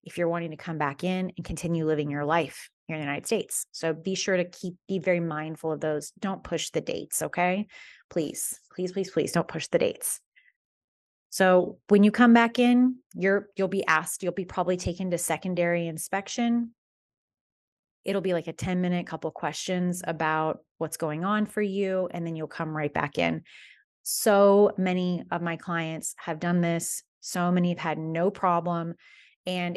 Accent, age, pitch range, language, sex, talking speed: American, 30-49, 160-190 Hz, English, female, 190 wpm